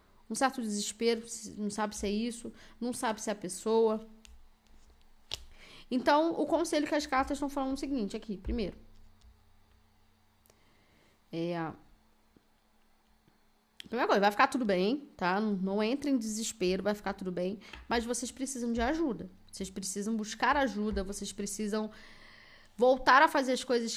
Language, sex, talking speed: Portuguese, female, 145 wpm